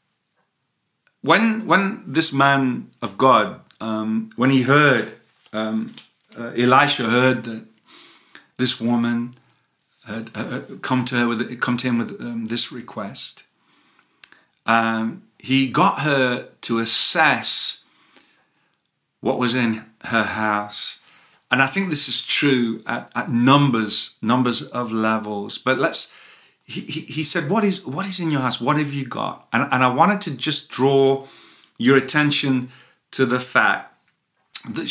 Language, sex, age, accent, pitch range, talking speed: English, male, 50-69, British, 115-145 Hz, 145 wpm